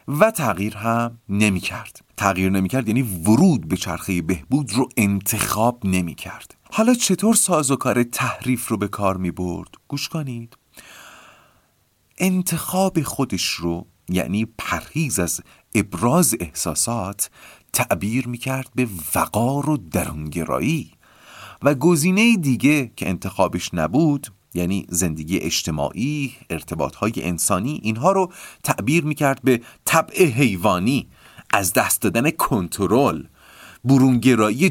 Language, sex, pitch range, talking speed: Persian, male, 95-145 Hz, 120 wpm